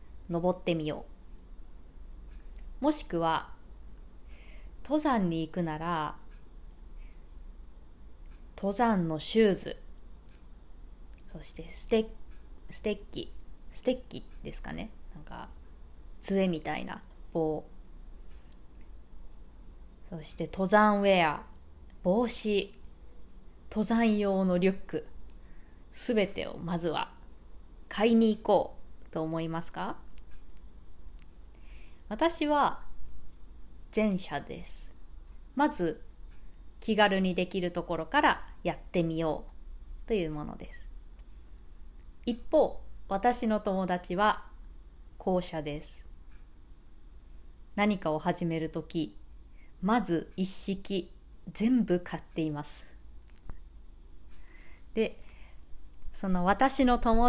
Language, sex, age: Japanese, female, 20-39